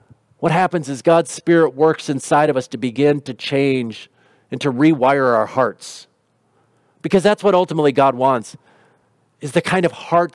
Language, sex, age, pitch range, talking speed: English, male, 50-69, 130-175 Hz, 170 wpm